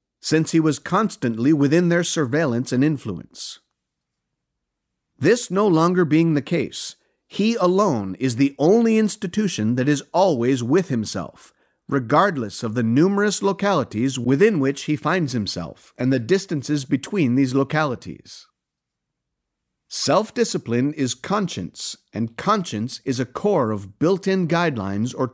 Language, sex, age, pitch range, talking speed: English, male, 50-69, 125-185 Hz, 130 wpm